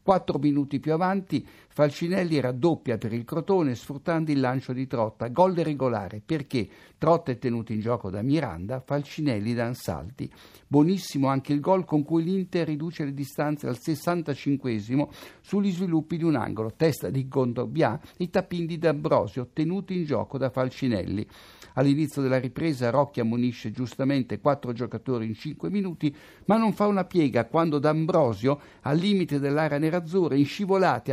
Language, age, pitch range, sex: Italian, 60-79, 120-160 Hz, male